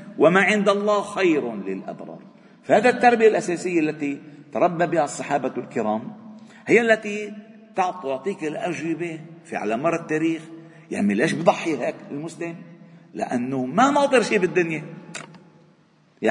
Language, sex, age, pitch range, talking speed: Arabic, male, 50-69, 160-220 Hz, 115 wpm